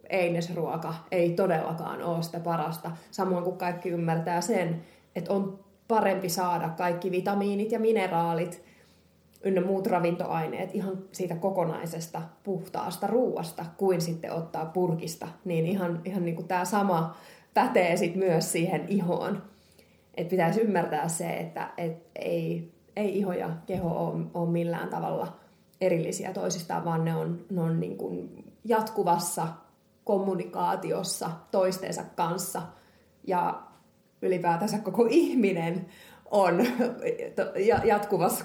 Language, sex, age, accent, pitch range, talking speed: Finnish, female, 20-39, native, 170-200 Hz, 120 wpm